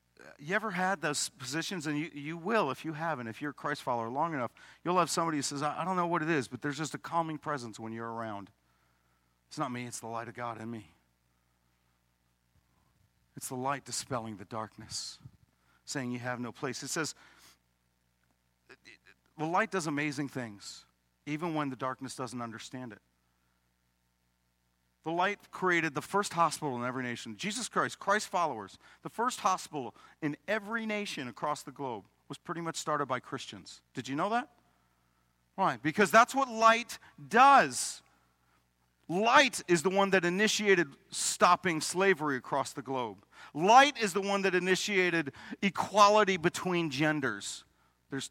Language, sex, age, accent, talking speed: English, male, 50-69, American, 165 wpm